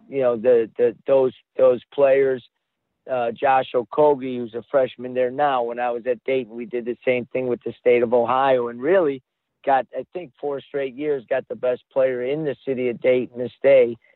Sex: male